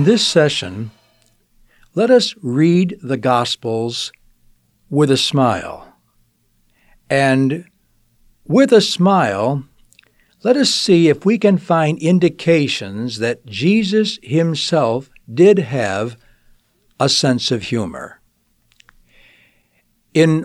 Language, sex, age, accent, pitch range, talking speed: English, male, 60-79, American, 120-175 Hz, 95 wpm